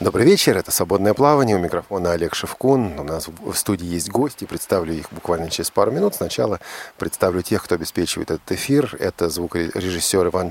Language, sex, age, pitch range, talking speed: Russian, male, 40-59, 85-125 Hz, 175 wpm